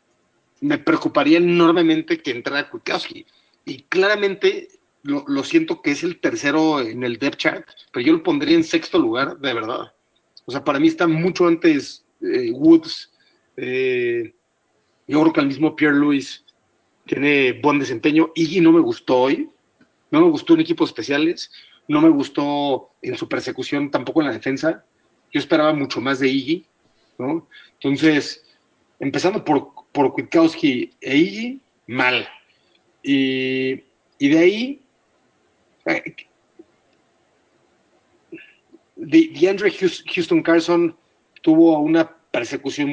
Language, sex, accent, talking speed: Spanish, male, Mexican, 135 wpm